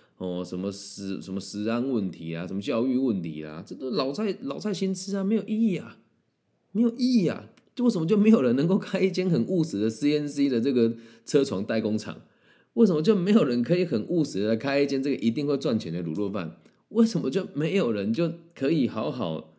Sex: male